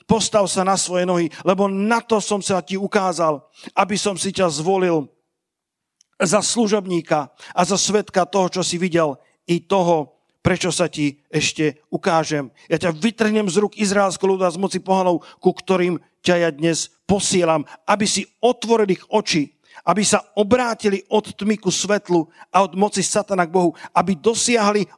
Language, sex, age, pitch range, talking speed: Slovak, male, 50-69, 175-215 Hz, 165 wpm